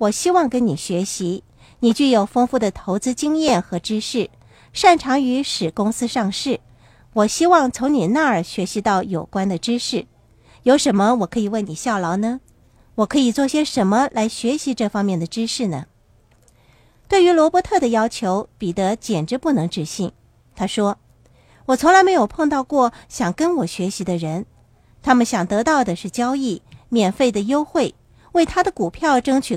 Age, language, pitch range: 50-69, Chinese, 185-260 Hz